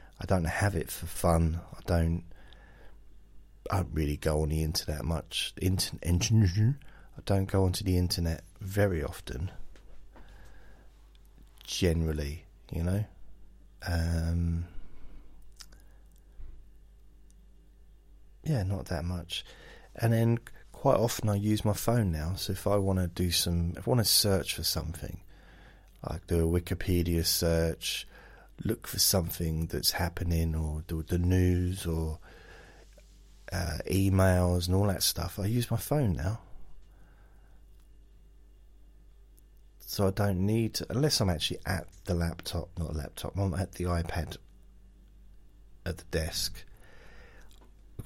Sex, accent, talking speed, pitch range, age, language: male, British, 130 wpm, 85-100 Hz, 30-49, English